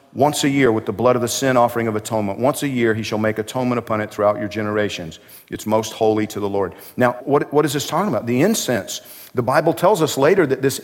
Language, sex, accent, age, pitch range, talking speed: English, male, American, 50-69, 130-175 Hz, 255 wpm